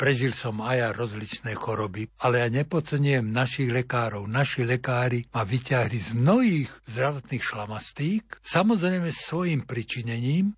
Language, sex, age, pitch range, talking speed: Slovak, male, 60-79, 120-155 Hz, 125 wpm